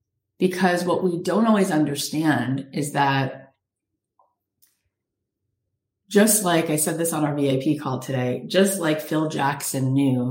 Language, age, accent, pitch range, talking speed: English, 40-59, American, 125-160 Hz, 135 wpm